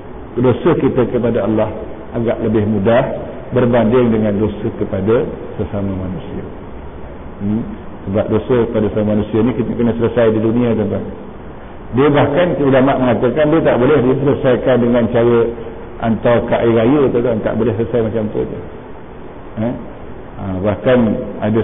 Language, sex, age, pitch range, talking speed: Malay, male, 50-69, 105-120 Hz, 140 wpm